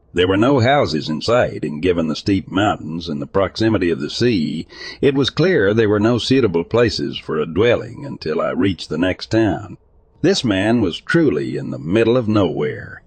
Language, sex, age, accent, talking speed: English, male, 60-79, American, 200 wpm